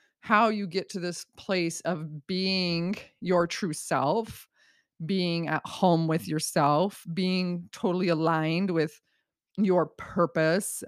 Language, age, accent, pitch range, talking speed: English, 30-49, American, 160-205 Hz, 120 wpm